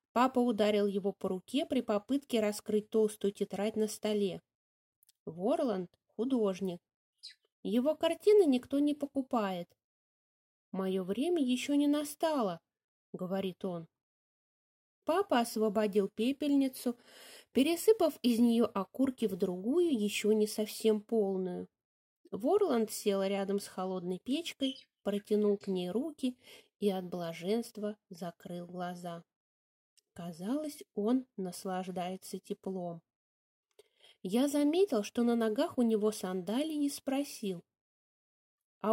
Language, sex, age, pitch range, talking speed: English, female, 20-39, 195-275 Hz, 105 wpm